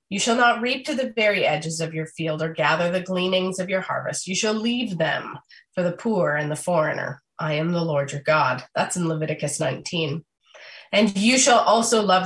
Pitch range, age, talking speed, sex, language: 165-220 Hz, 30-49, 210 wpm, female, English